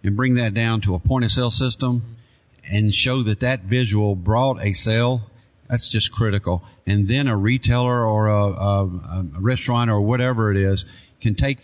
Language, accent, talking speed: English, American, 175 wpm